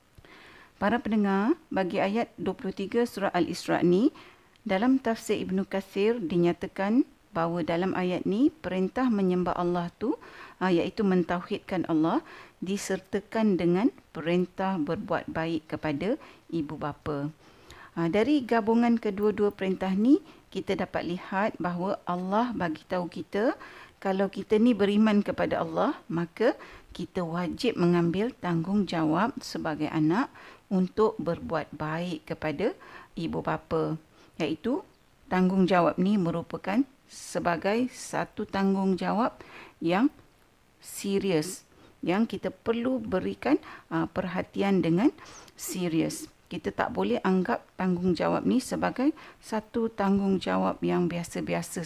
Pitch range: 170-225 Hz